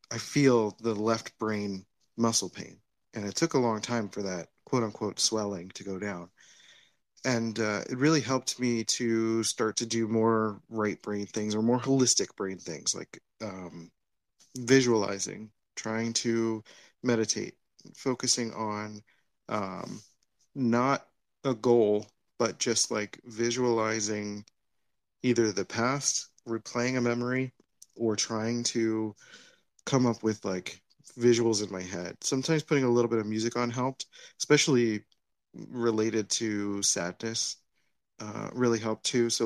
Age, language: 30-49, English